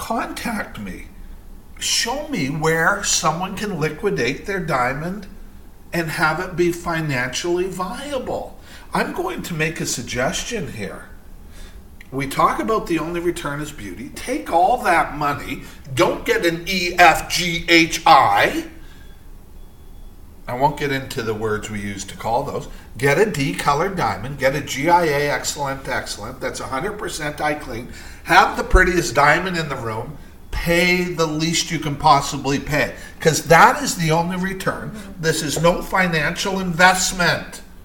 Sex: male